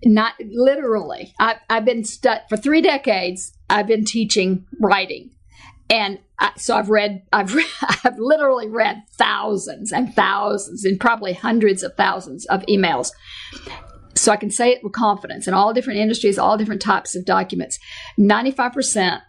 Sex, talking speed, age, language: female, 160 wpm, 50-69, English